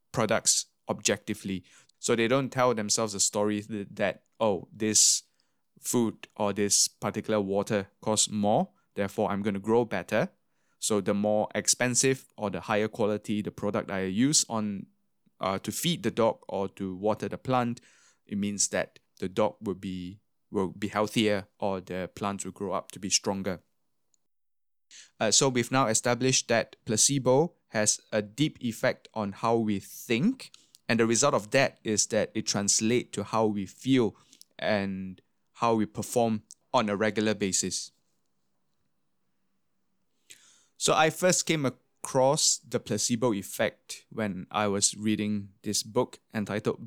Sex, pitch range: male, 100-120 Hz